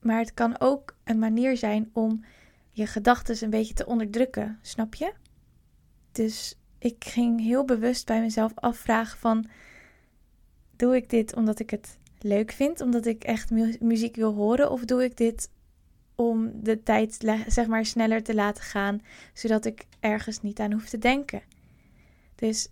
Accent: Dutch